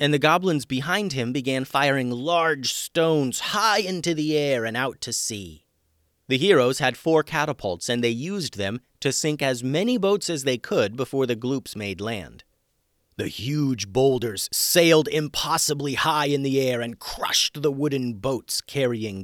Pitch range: 115-150 Hz